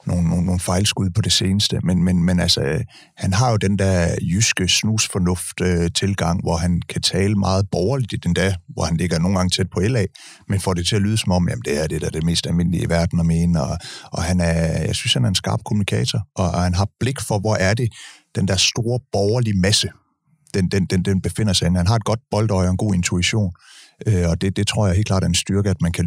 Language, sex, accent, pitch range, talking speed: Danish, male, native, 90-110 Hz, 260 wpm